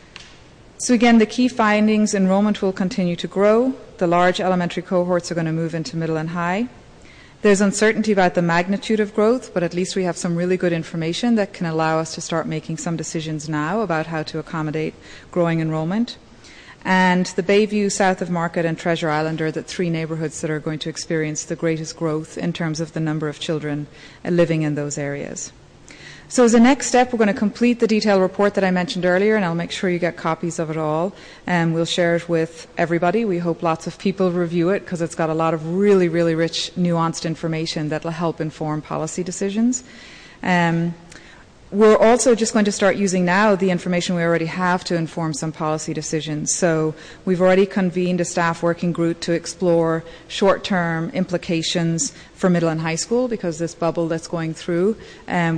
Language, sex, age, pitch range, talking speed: English, female, 30-49, 160-190 Hz, 195 wpm